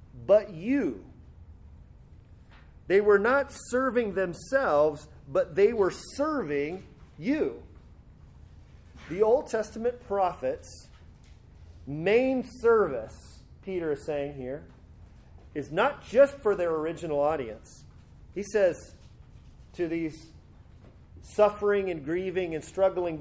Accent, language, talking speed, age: American, English, 100 wpm, 40-59